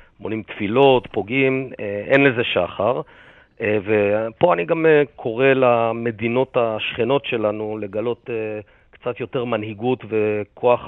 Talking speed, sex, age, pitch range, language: 100 wpm, male, 40-59, 105-135 Hz, English